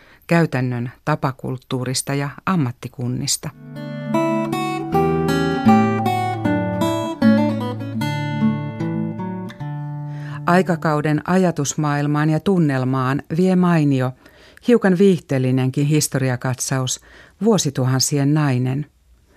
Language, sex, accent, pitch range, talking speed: Finnish, female, native, 125-165 Hz, 45 wpm